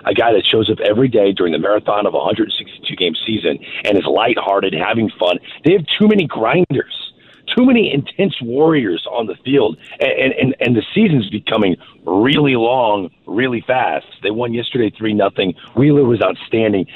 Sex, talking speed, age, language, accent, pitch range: male, 175 wpm, 40-59, English, American, 120-165 Hz